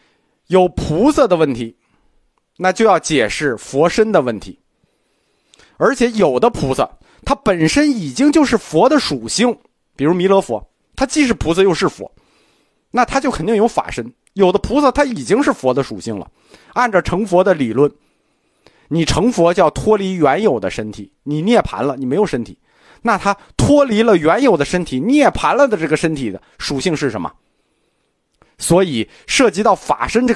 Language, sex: Chinese, male